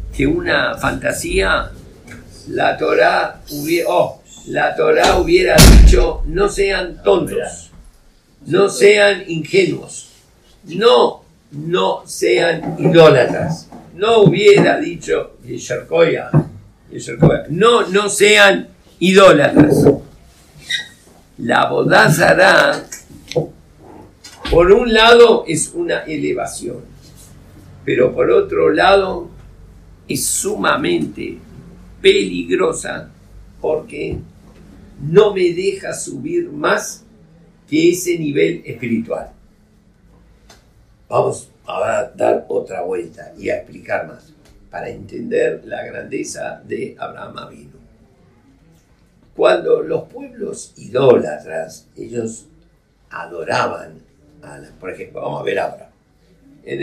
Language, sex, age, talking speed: Spanish, male, 50-69, 85 wpm